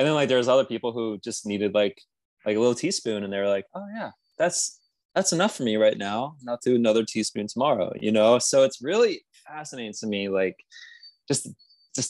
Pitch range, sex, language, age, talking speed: 100-125 Hz, male, English, 20-39, 215 wpm